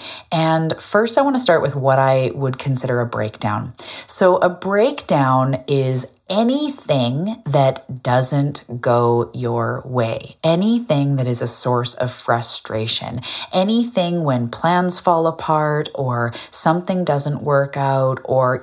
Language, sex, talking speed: English, female, 130 wpm